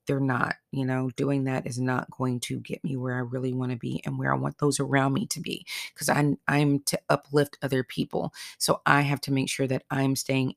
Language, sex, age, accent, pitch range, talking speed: English, female, 30-49, American, 130-150 Hz, 245 wpm